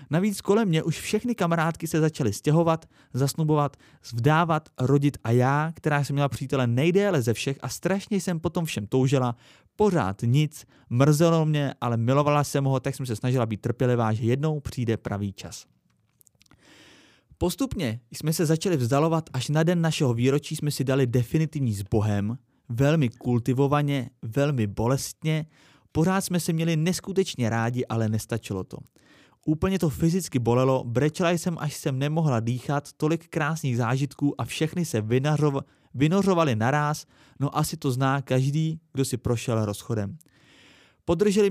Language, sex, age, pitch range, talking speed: Czech, male, 30-49, 125-160 Hz, 145 wpm